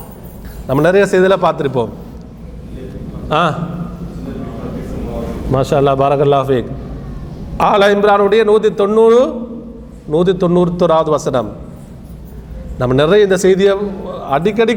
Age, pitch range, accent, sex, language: 40-59, 170-215 Hz, native, male, Tamil